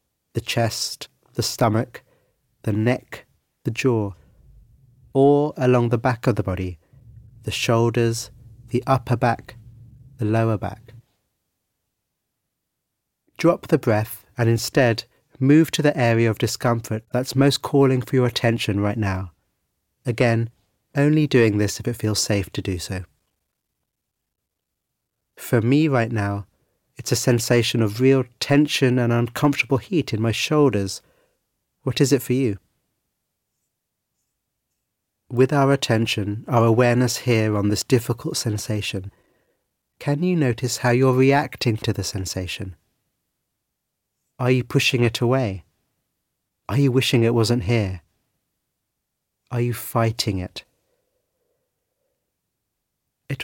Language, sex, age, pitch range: English, male, 30-49, 110-130 Hz